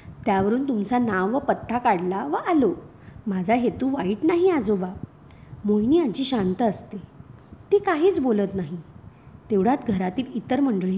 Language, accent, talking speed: Marathi, native, 125 wpm